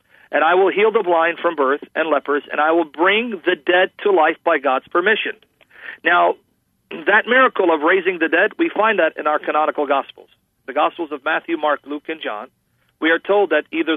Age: 40-59